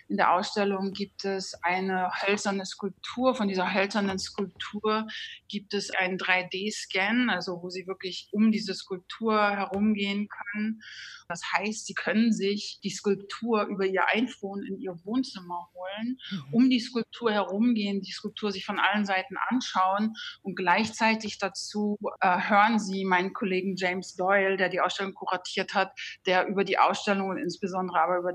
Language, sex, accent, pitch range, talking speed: German, female, German, 185-205 Hz, 155 wpm